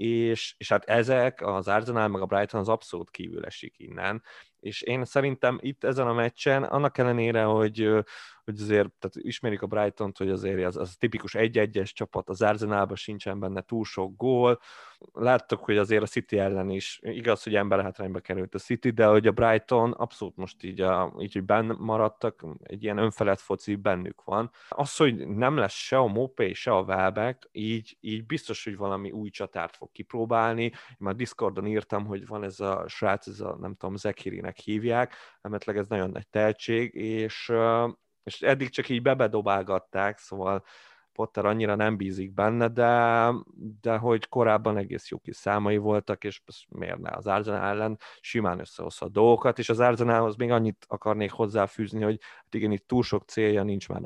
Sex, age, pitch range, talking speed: male, 20-39, 100-115 Hz, 175 wpm